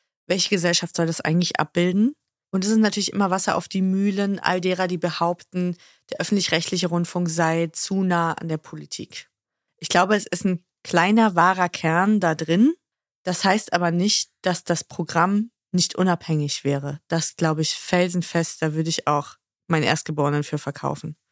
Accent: German